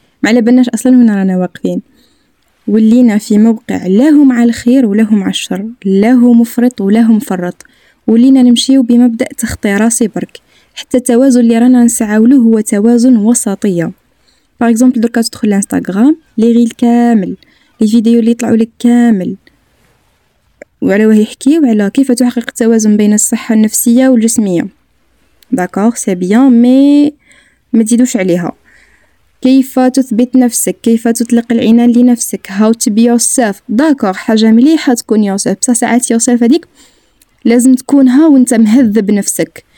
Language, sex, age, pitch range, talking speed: Arabic, female, 10-29, 225-260 Hz, 130 wpm